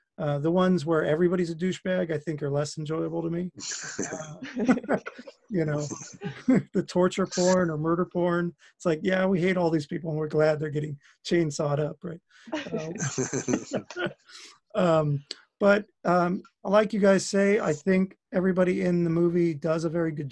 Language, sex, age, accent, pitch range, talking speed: English, male, 40-59, American, 150-180 Hz, 170 wpm